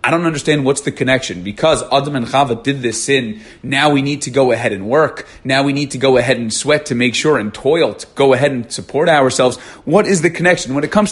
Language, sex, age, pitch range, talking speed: English, male, 30-49, 120-155 Hz, 255 wpm